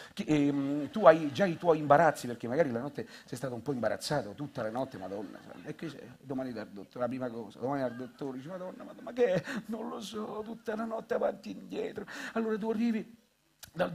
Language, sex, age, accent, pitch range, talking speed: Italian, male, 50-69, native, 150-225 Hz, 225 wpm